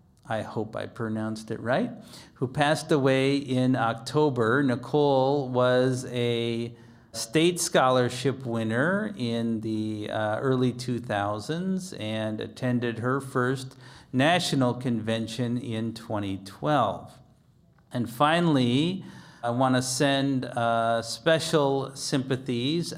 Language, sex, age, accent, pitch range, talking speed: English, male, 40-59, American, 115-140 Hz, 100 wpm